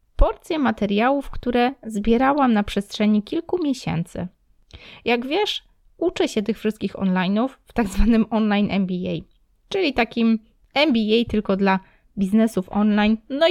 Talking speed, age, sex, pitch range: 125 wpm, 20-39, female, 195-240 Hz